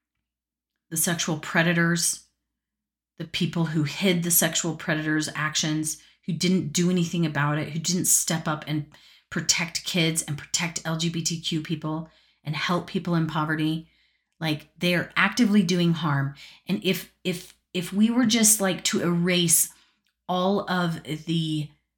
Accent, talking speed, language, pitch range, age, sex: American, 140 wpm, English, 150-180 Hz, 30-49, female